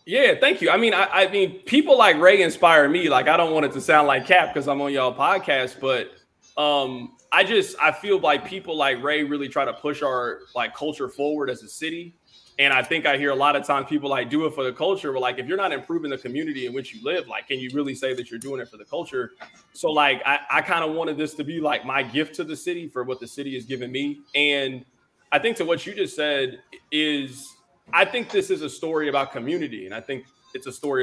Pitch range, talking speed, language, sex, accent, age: 130-165 Hz, 260 wpm, English, male, American, 20-39